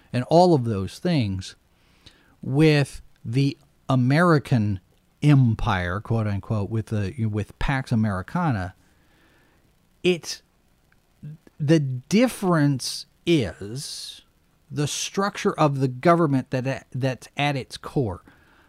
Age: 40-59